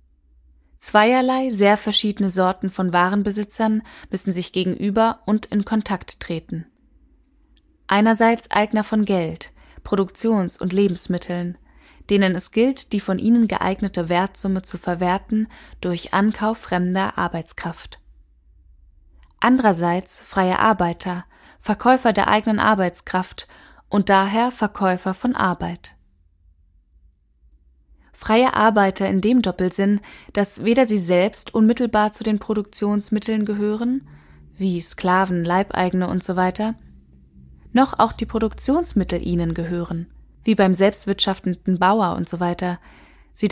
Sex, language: female, German